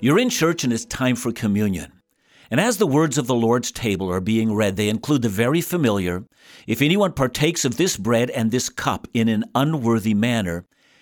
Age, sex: 50-69, male